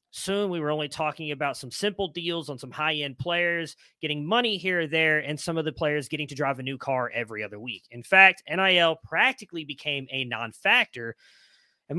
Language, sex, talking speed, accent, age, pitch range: English, male, 200 wpm, American, 30-49, 135-165 Hz